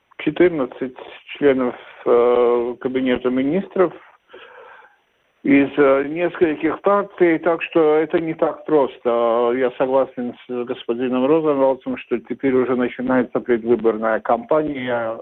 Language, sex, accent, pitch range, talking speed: Russian, male, native, 125-150 Hz, 105 wpm